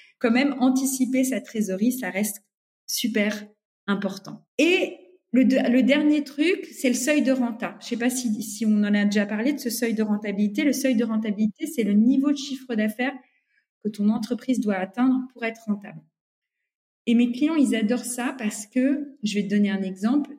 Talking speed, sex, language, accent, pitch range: 200 wpm, female, French, French, 205-255 Hz